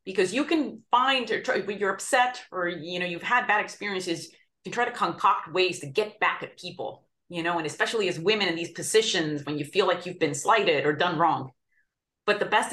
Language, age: English, 30-49